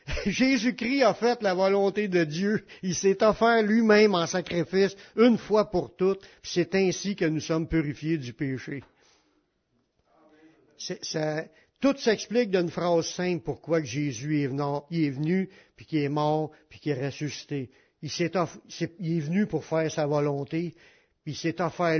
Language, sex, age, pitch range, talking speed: French, male, 60-79, 155-210 Hz, 165 wpm